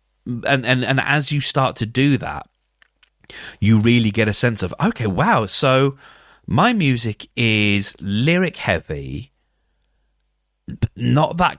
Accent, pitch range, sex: British, 100-135 Hz, male